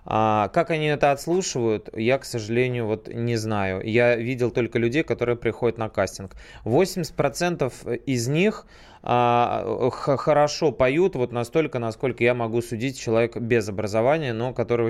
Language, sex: Russian, male